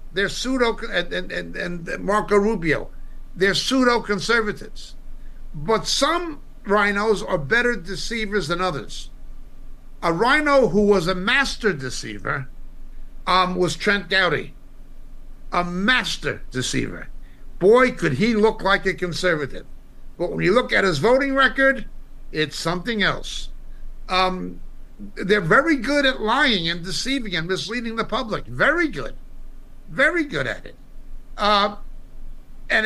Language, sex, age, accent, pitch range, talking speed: English, male, 60-79, American, 165-225 Hz, 125 wpm